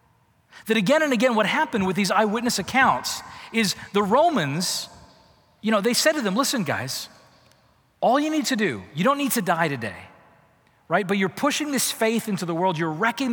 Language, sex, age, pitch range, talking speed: English, male, 40-59, 190-260 Hz, 195 wpm